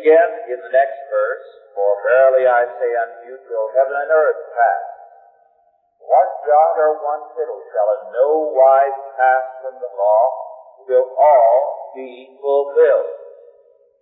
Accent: American